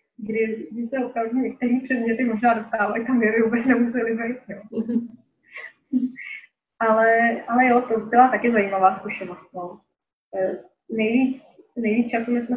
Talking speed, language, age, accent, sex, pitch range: 130 wpm, Czech, 20-39, native, female, 205-230 Hz